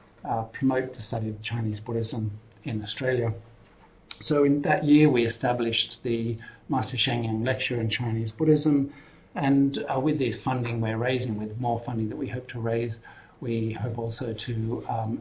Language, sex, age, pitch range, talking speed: English, male, 50-69, 115-130 Hz, 165 wpm